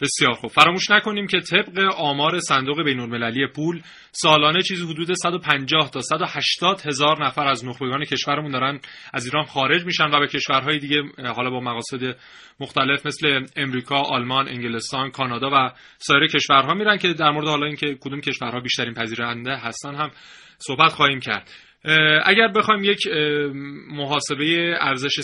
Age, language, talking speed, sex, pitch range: 30-49, Persian, 145 wpm, male, 130-160 Hz